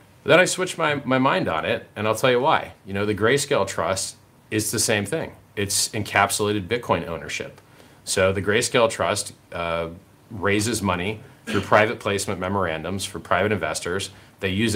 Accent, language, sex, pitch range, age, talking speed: American, English, male, 95-110 Hz, 30-49, 170 wpm